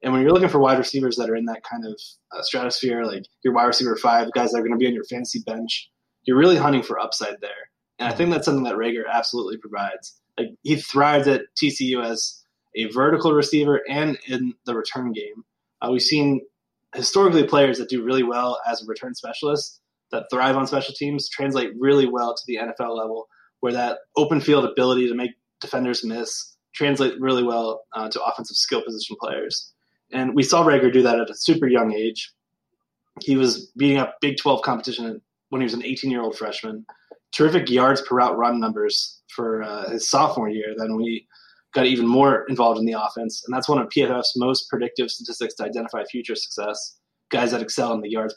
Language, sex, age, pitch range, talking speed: English, male, 20-39, 115-140 Hz, 205 wpm